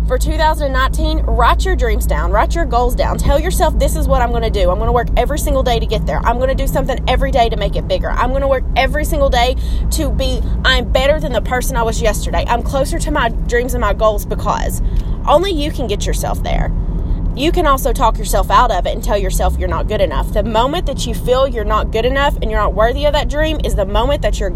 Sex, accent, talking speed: female, American, 265 wpm